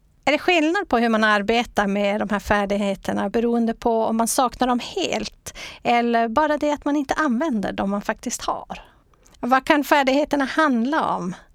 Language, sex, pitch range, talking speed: English, female, 210-260 Hz, 175 wpm